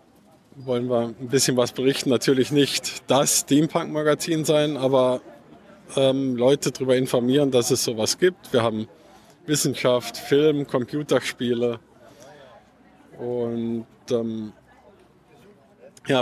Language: German